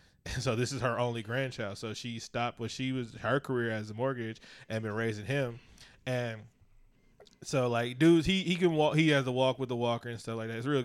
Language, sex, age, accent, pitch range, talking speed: English, male, 20-39, American, 110-130 Hz, 240 wpm